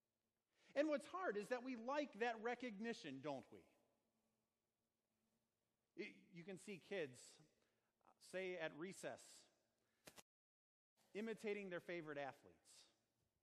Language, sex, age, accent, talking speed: English, male, 40-59, American, 100 wpm